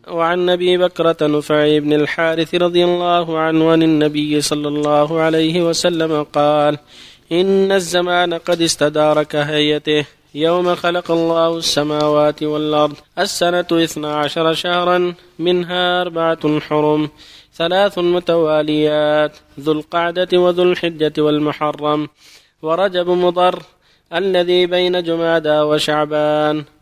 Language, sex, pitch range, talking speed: Arabic, male, 150-180 Hz, 100 wpm